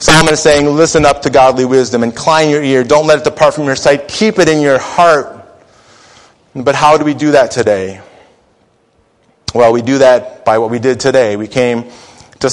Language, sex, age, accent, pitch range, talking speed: English, male, 30-49, American, 115-135 Hz, 200 wpm